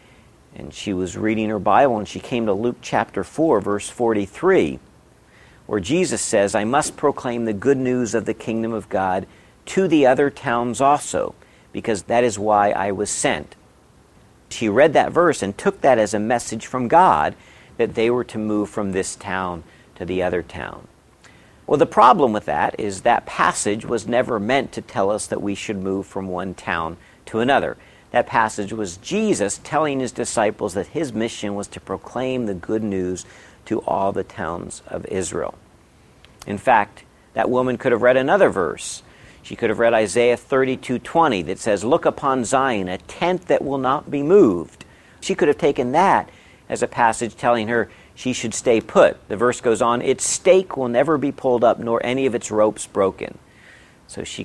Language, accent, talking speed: English, American, 185 wpm